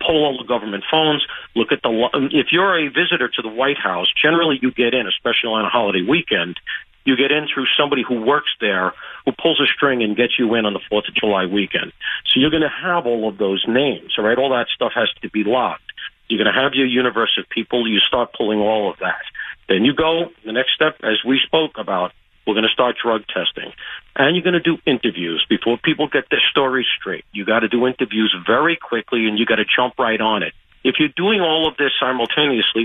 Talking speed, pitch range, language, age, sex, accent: 235 wpm, 110-145 Hz, English, 50-69, male, American